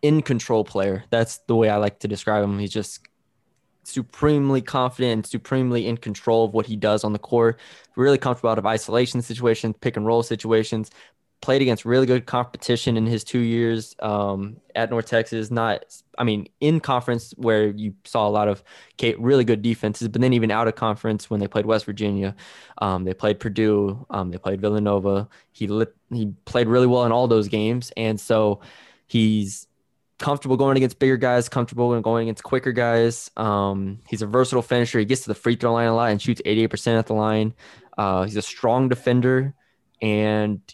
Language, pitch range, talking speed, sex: English, 105-120 Hz, 195 wpm, male